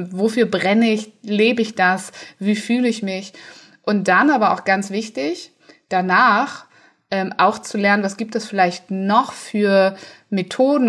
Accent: German